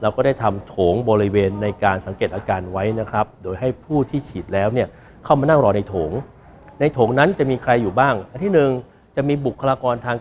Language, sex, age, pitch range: Thai, male, 60-79, 105-130 Hz